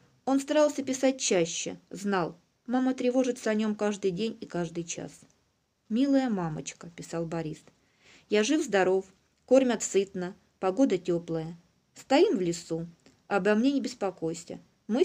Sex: female